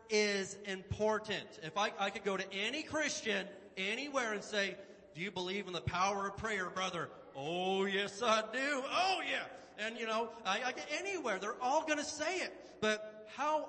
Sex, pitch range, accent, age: male, 185-245 Hz, American, 30-49